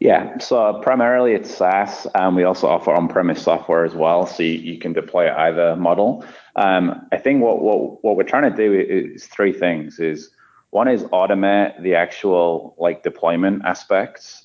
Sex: male